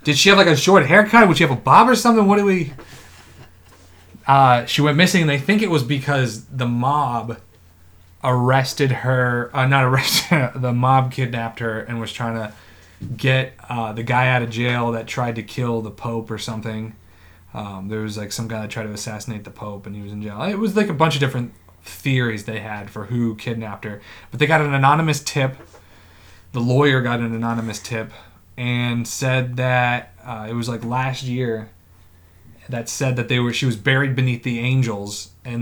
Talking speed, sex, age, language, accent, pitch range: 205 wpm, male, 30-49, English, American, 105-130 Hz